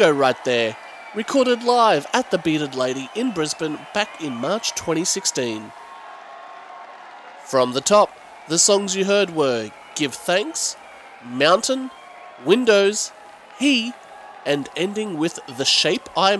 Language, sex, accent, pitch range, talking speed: English, male, Australian, 145-220 Hz, 120 wpm